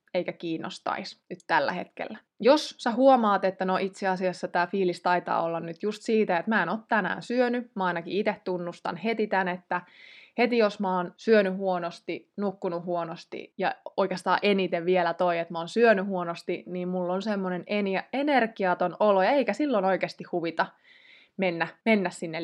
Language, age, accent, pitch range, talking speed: Finnish, 20-39, native, 180-225 Hz, 170 wpm